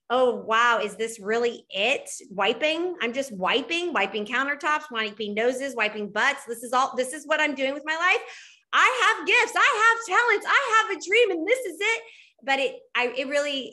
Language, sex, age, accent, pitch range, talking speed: English, female, 20-39, American, 185-270 Hz, 200 wpm